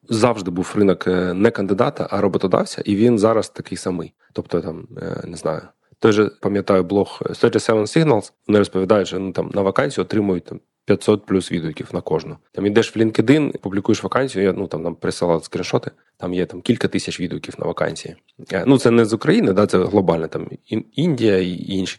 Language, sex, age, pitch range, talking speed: Ukrainian, male, 20-39, 95-115 Hz, 185 wpm